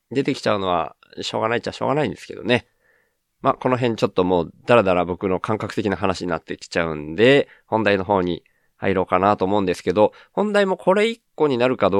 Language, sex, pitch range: Japanese, male, 100-150 Hz